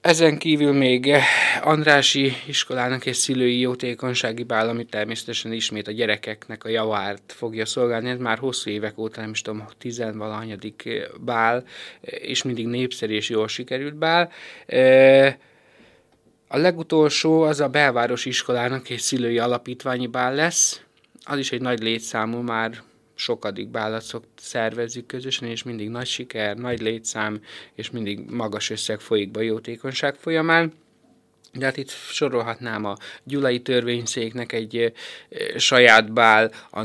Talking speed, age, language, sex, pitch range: 135 wpm, 20-39, Hungarian, male, 115-130 Hz